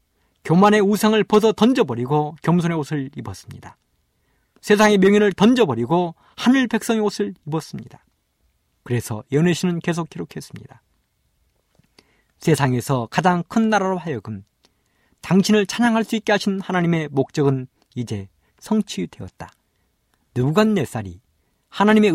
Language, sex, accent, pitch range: Korean, male, native, 120-200 Hz